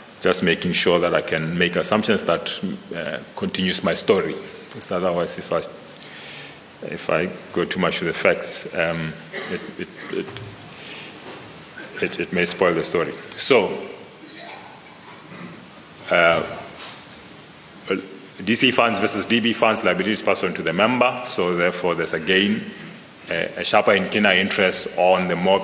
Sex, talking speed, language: male, 135 wpm, English